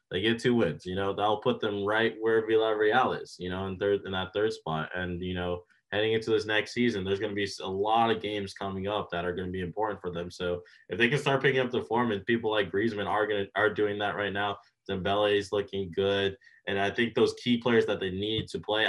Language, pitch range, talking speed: English, 95-110 Hz, 265 wpm